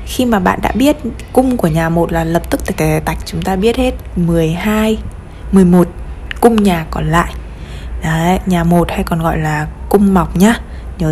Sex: female